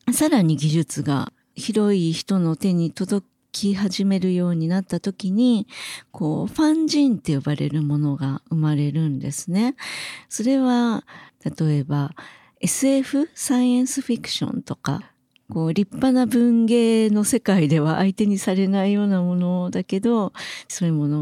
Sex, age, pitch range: female, 40-59, 165-215 Hz